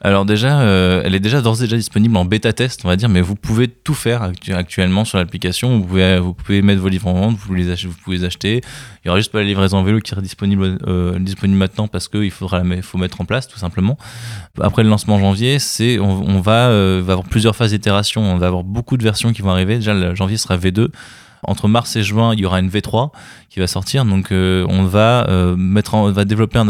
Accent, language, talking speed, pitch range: French, French, 255 wpm, 95-115 Hz